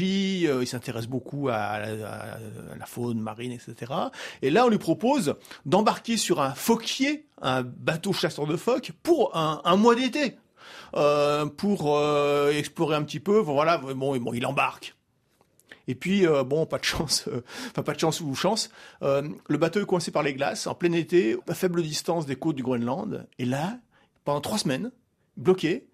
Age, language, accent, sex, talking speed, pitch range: 50-69, French, French, male, 180 wpm, 140-190 Hz